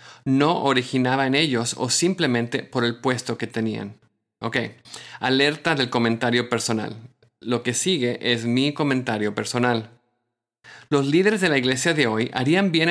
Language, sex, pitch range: English, male, 120-145 Hz